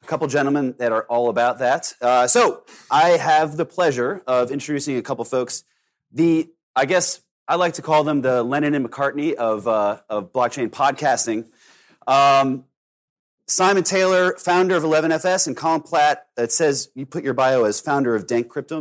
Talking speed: 180 wpm